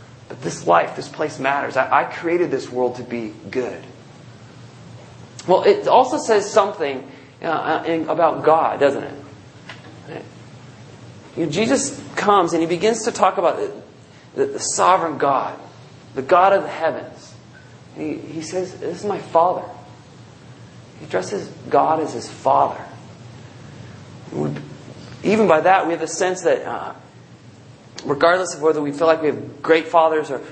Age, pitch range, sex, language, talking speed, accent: 40-59, 135-180 Hz, male, English, 145 wpm, American